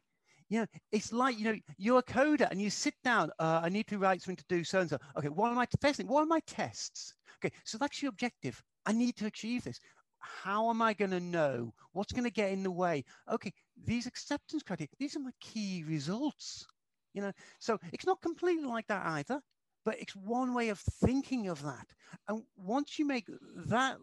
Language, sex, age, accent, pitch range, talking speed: English, male, 50-69, British, 170-245 Hz, 215 wpm